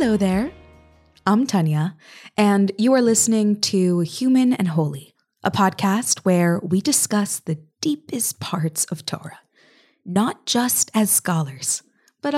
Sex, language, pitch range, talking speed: female, English, 170-220 Hz, 130 wpm